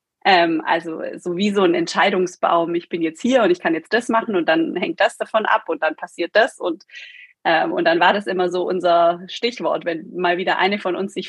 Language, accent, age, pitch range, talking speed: German, German, 30-49, 185-265 Hz, 225 wpm